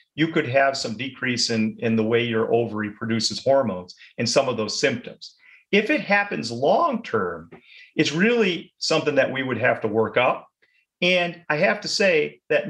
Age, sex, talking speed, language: 40-59, male, 185 wpm, English